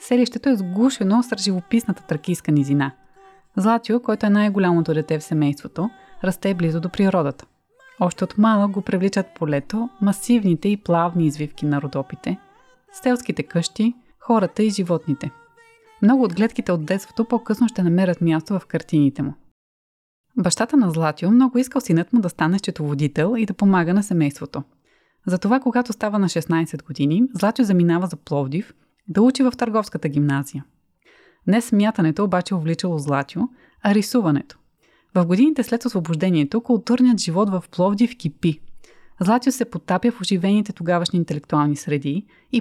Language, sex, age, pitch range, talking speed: Bulgarian, female, 20-39, 165-225 Hz, 145 wpm